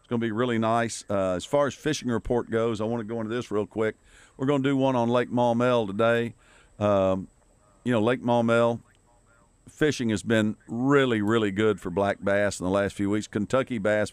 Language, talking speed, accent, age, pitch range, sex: English, 205 wpm, American, 50-69, 100-120 Hz, male